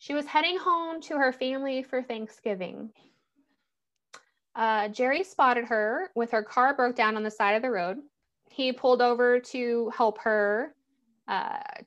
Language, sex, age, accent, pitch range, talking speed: English, female, 20-39, American, 215-260 Hz, 155 wpm